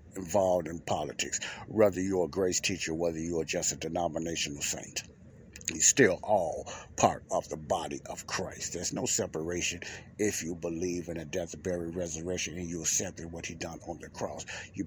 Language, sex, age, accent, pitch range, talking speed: English, male, 60-79, American, 85-100 Hz, 180 wpm